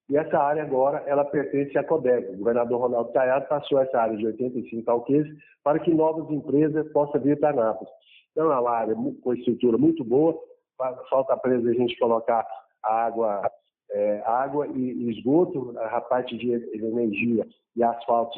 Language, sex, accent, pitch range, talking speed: Portuguese, male, Brazilian, 115-140 Hz, 165 wpm